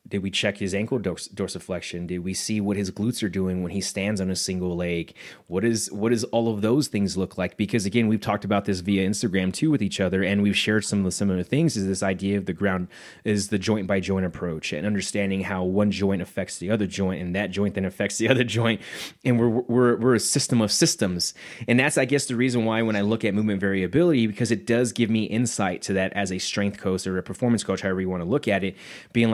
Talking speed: 260 wpm